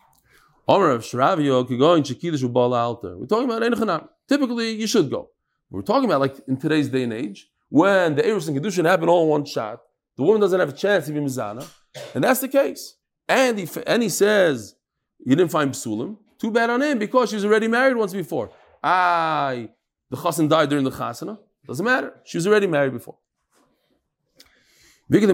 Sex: male